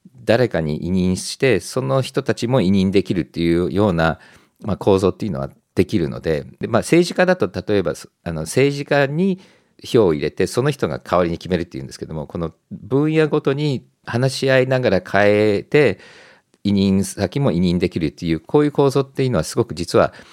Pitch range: 85-140 Hz